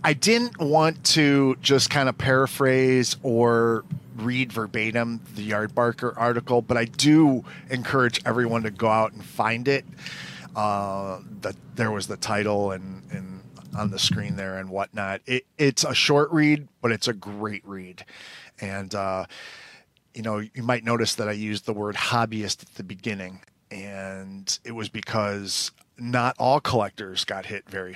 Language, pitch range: English, 105-140 Hz